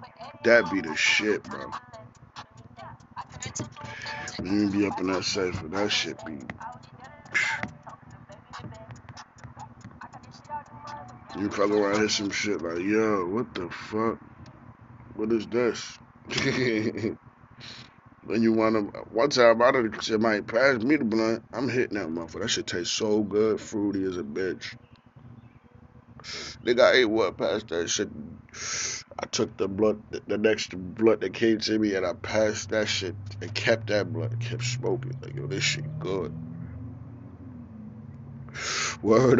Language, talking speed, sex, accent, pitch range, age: English, 140 wpm, male, American, 105-125 Hz, 20-39